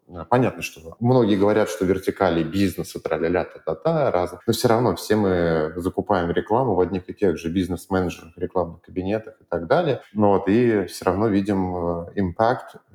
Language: Russian